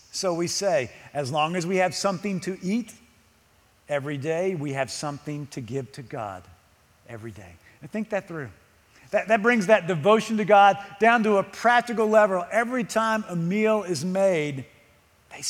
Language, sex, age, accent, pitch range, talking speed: English, male, 50-69, American, 145-220 Hz, 175 wpm